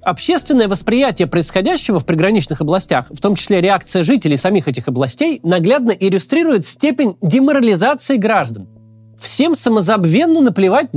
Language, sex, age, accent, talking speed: Russian, male, 30-49, native, 120 wpm